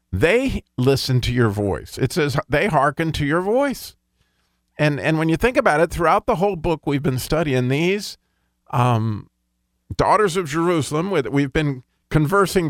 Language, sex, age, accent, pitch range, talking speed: English, male, 50-69, American, 125-165 Hz, 165 wpm